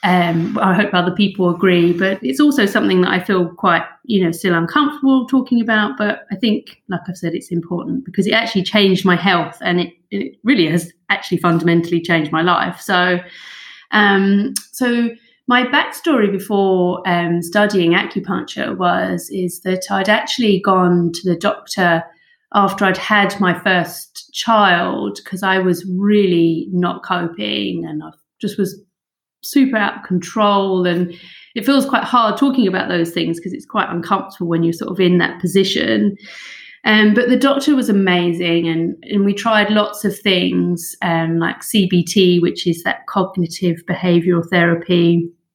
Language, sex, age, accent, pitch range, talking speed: English, female, 30-49, British, 175-210 Hz, 165 wpm